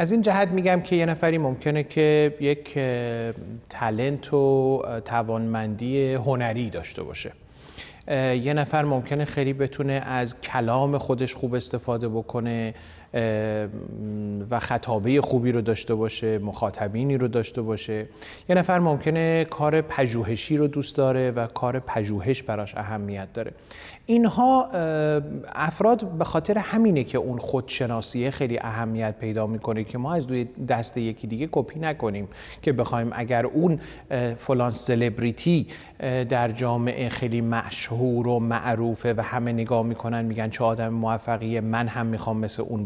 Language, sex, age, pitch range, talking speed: Persian, male, 30-49, 115-145 Hz, 135 wpm